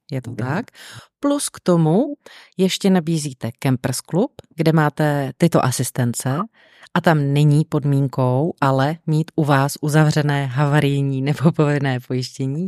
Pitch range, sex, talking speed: 145-170 Hz, female, 130 wpm